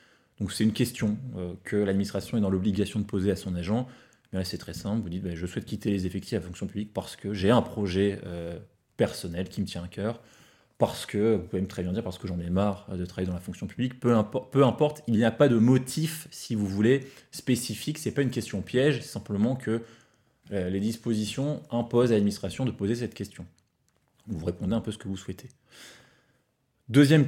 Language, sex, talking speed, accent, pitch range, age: French, male, 220 wpm, French, 100-125 Hz, 20-39